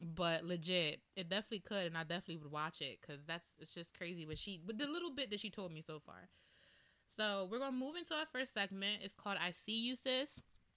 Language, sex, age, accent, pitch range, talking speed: English, female, 20-39, American, 170-235 Hz, 235 wpm